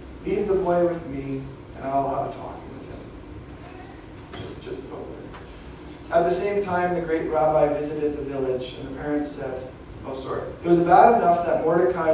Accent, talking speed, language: American, 190 wpm, English